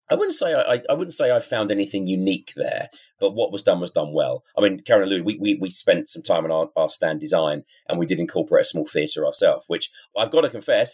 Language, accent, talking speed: English, British, 265 wpm